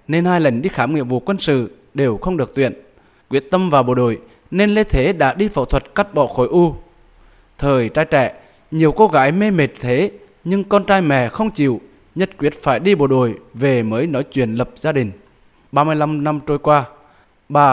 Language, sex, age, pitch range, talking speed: Vietnamese, male, 20-39, 130-180 Hz, 210 wpm